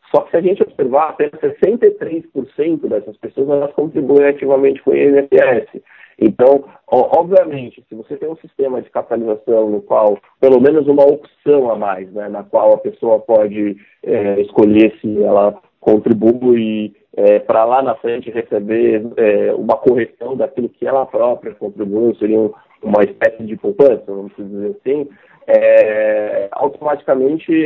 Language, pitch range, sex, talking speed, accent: Portuguese, 110-170 Hz, male, 150 wpm, Brazilian